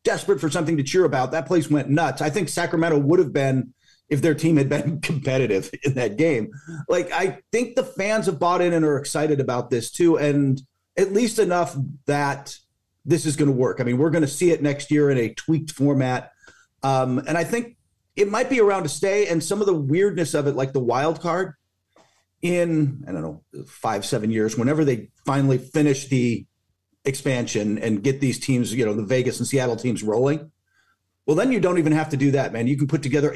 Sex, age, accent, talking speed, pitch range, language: male, 40-59, American, 220 wpm, 130-165 Hz, English